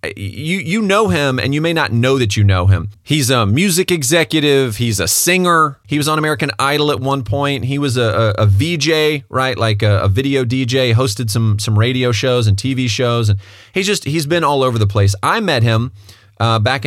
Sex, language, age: male, English, 30-49